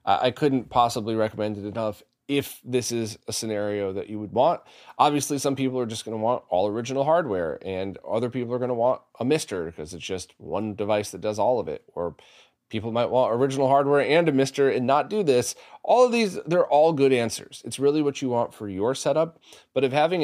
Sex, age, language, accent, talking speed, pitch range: male, 30-49, English, American, 225 wpm, 110-145 Hz